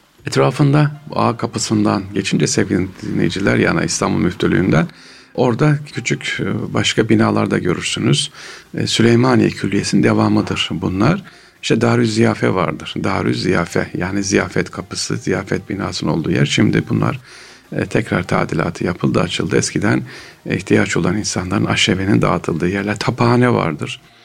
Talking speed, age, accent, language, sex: 115 wpm, 50-69, native, Turkish, male